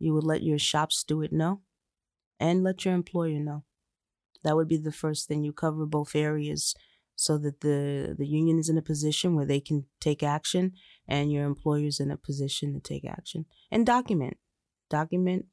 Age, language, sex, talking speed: 20-39, English, female, 190 wpm